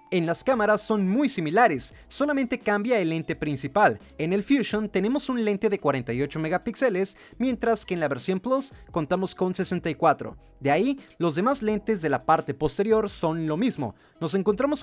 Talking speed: 175 wpm